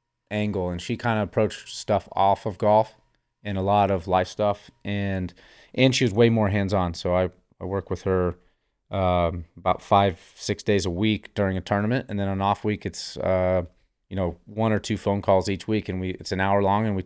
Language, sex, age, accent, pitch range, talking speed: English, male, 30-49, American, 95-110 Hz, 220 wpm